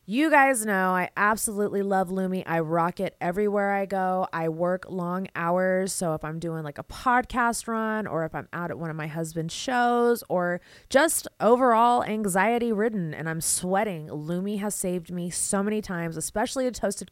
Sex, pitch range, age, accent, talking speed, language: female, 170-230 Hz, 20-39, American, 180 wpm, English